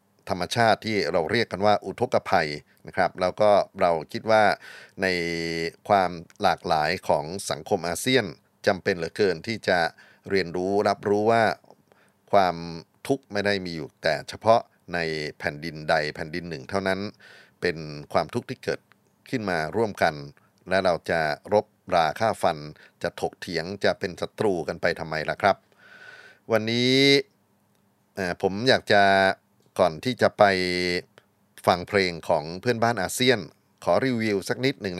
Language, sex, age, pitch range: Thai, male, 30-49, 85-115 Hz